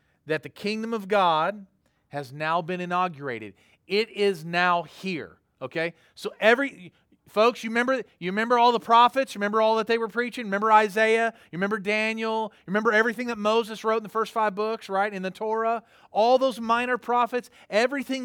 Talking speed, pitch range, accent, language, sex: 185 wpm, 160-225 Hz, American, English, male